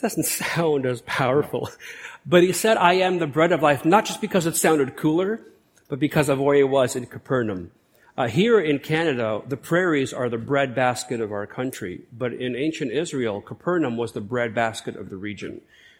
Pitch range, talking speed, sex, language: 125-175 Hz, 190 wpm, male, English